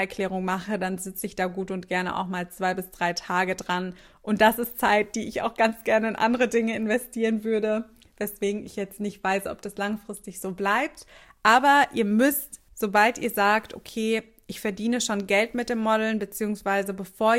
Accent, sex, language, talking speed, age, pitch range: German, female, German, 195 wpm, 20-39, 195-225 Hz